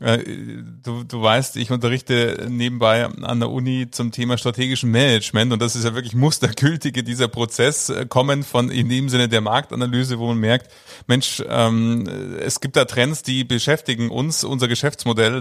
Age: 30-49